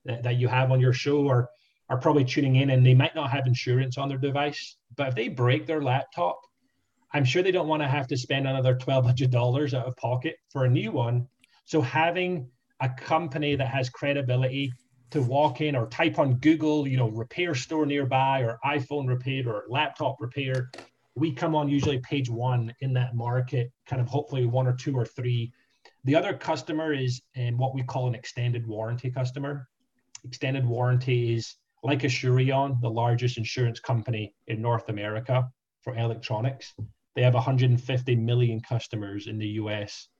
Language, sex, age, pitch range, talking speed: English, male, 30-49, 120-140 Hz, 180 wpm